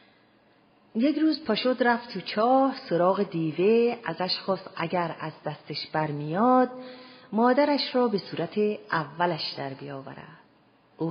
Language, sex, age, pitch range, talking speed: Persian, female, 40-59, 155-200 Hz, 120 wpm